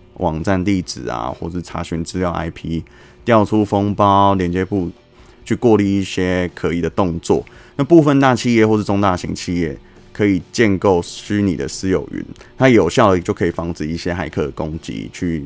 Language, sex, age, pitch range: Chinese, male, 20-39, 85-105 Hz